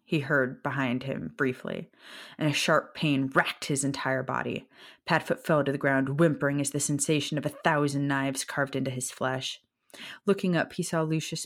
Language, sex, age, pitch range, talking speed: English, female, 20-39, 135-170 Hz, 185 wpm